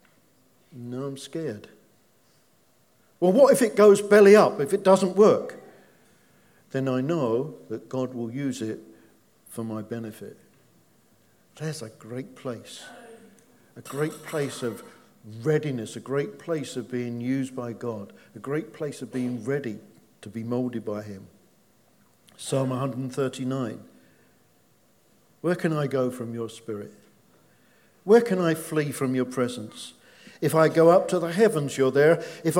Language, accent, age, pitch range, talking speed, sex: English, British, 50-69, 115-175 Hz, 145 wpm, male